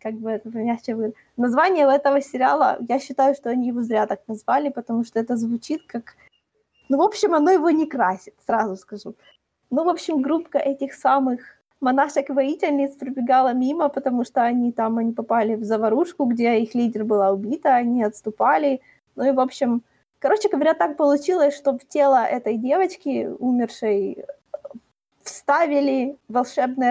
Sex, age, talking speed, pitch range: female, 20-39, 155 wpm, 230-285 Hz